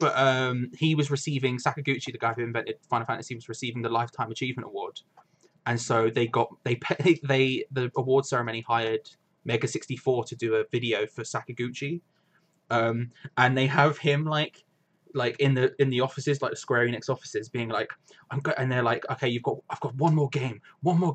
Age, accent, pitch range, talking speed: 20-39, British, 120-155 Hz, 200 wpm